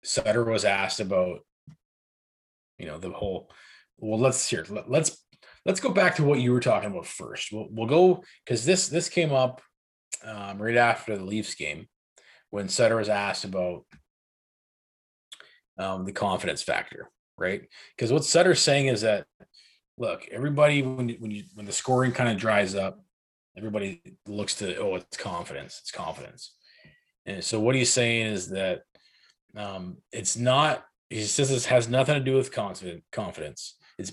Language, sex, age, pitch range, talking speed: English, male, 20-39, 100-135 Hz, 165 wpm